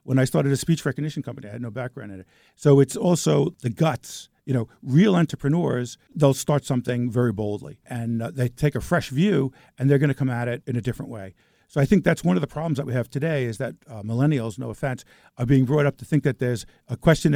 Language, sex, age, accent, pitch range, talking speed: English, male, 50-69, American, 120-150 Hz, 250 wpm